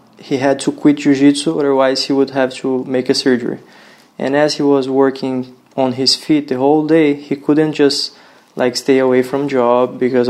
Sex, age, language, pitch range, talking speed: male, 20-39, Bulgarian, 125-140 Hz, 190 wpm